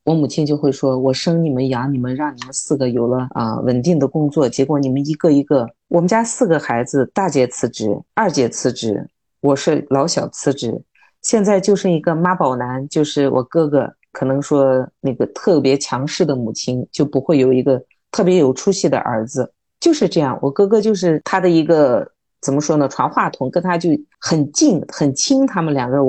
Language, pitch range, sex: Chinese, 130-170 Hz, female